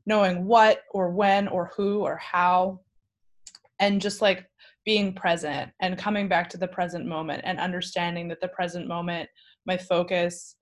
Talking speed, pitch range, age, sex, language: 160 wpm, 170-200 Hz, 20-39, female, English